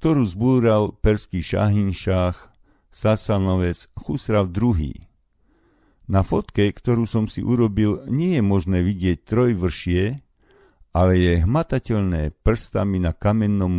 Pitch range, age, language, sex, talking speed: 85-110 Hz, 50-69, Slovak, male, 110 wpm